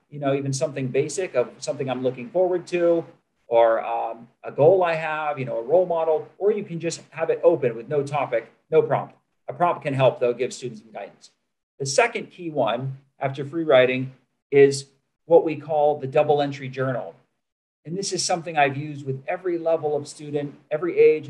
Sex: male